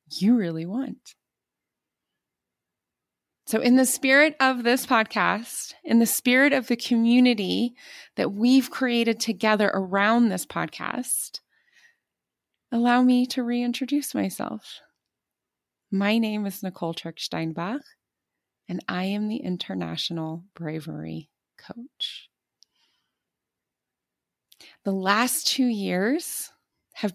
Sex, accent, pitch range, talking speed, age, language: female, American, 195-260 Hz, 100 wpm, 20-39, English